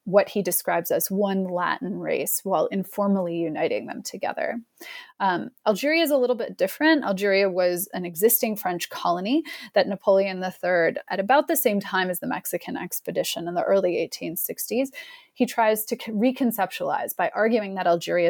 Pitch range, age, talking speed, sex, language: 180-250 Hz, 30-49, 160 wpm, female, English